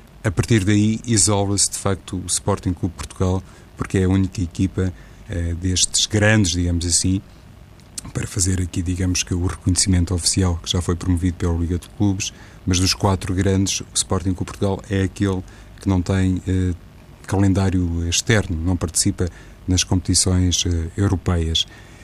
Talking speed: 160 wpm